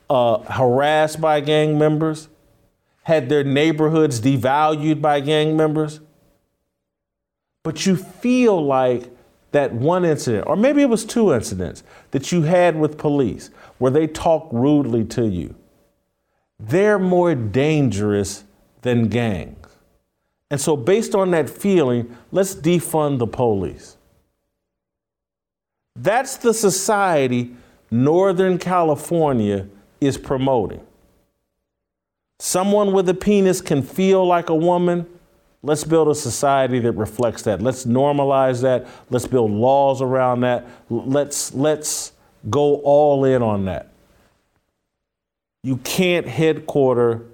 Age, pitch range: 50-69, 115-155 Hz